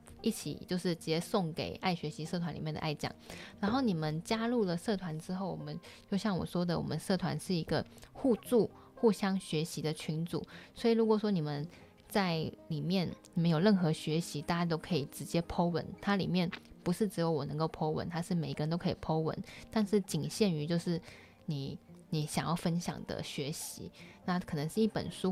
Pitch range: 155-185 Hz